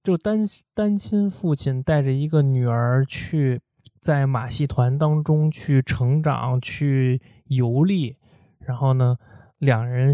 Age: 20-39